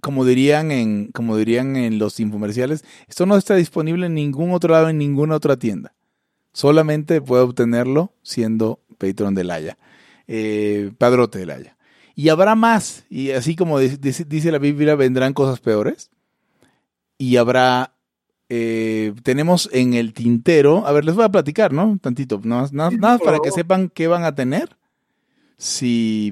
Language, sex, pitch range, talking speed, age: Spanish, male, 115-150 Hz, 160 wpm, 30-49